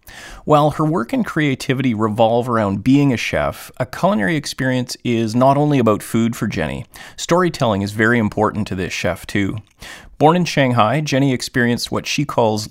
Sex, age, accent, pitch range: male, 30-49, American, 105-135 Hz